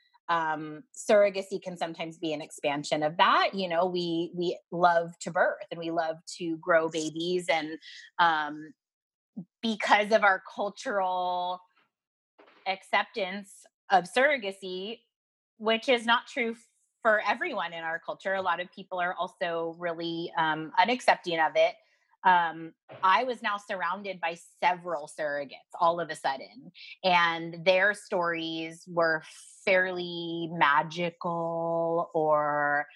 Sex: female